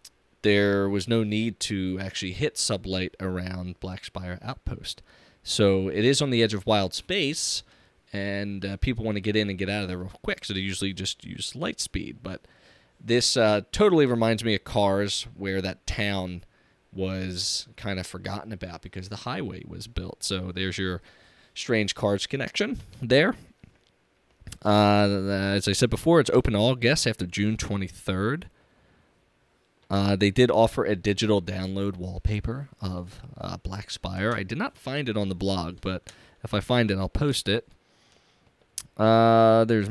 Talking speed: 170 wpm